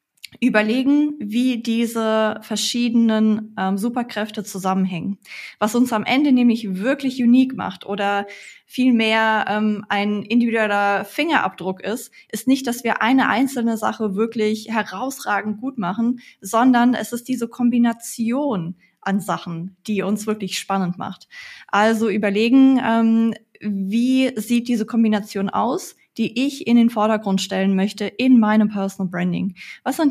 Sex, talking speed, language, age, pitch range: female, 130 wpm, German, 20-39, 200-240 Hz